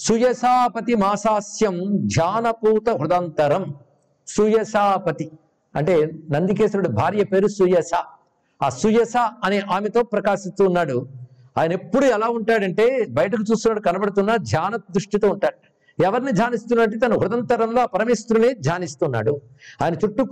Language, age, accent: Telugu, 50-69, native